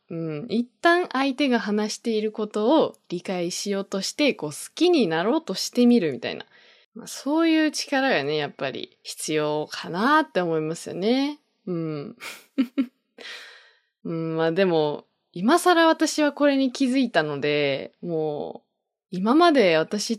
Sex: female